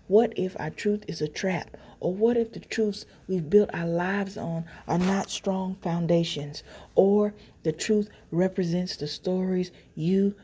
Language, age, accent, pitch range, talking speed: English, 40-59, American, 160-200 Hz, 160 wpm